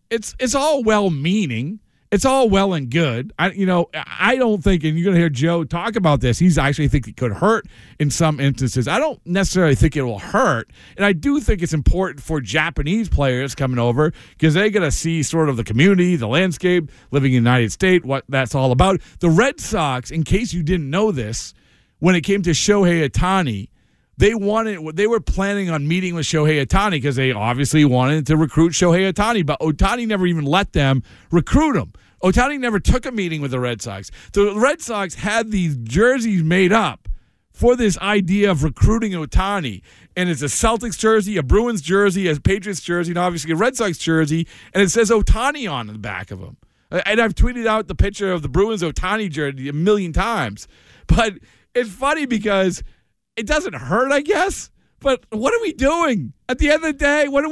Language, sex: English, male